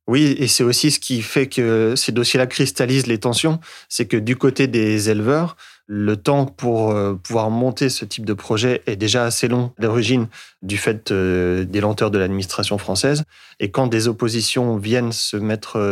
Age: 30-49